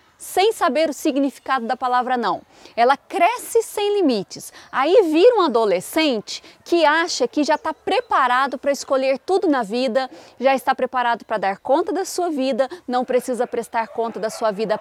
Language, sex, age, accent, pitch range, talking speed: Portuguese, female, 20-39, Brazilian, 240-305 Hz, 170 wpm